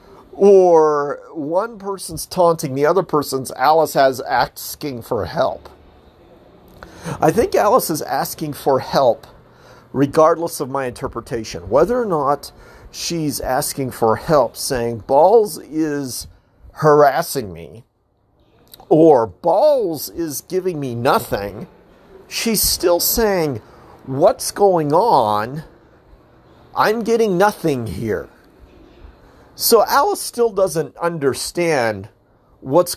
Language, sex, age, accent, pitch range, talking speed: English, male, 50-69, American, 130-175 Hz, 105 wpm